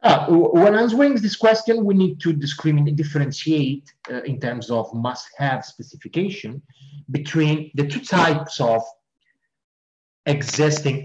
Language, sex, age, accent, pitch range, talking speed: English, male, 30-49, Italian, 120-185 Hz, 120 wpm